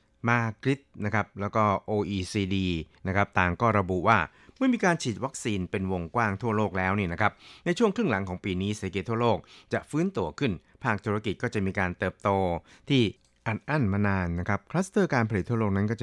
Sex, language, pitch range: male, Thai, 90-115 Hz